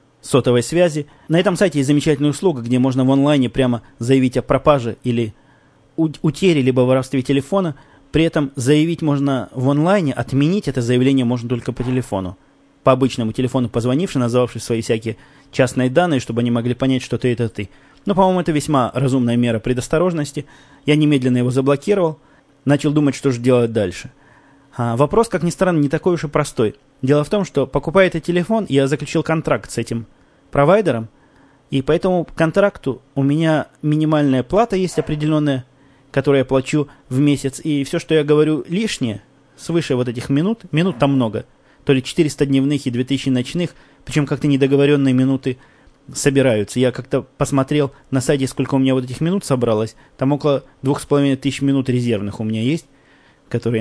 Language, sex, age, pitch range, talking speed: Russian, male, 20-39, 130-150 Hz, 170 wpm